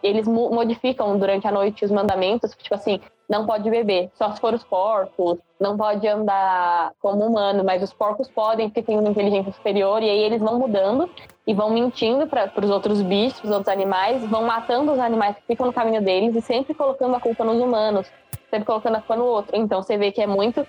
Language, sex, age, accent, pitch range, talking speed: Portuguese, female, 10-29, Brazilian, 195-220 Hz, 215 wpm